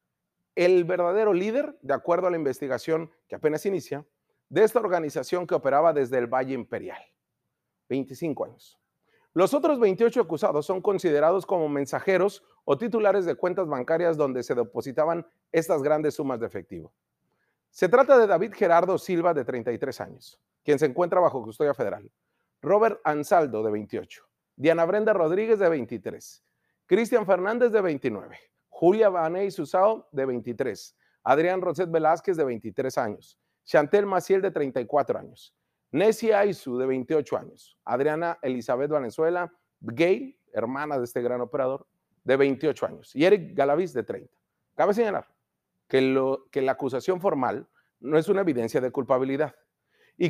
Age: 40-59